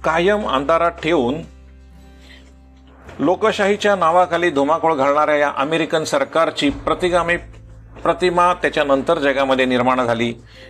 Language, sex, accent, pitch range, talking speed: Marathi, male, native, 130-185 Hz, 90 wpm